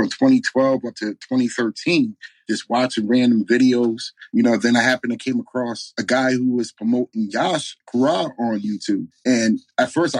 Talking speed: 185 wpm